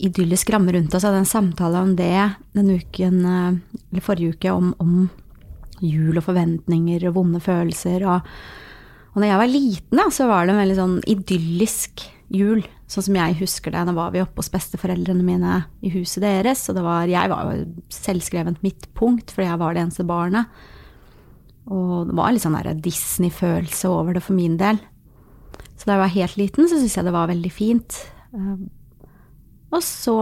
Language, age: English, 30-49